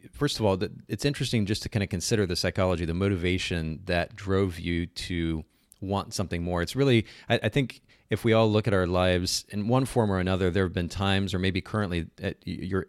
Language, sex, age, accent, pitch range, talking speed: English, male, 30-49, American, 90-105 Hz, 215 wpm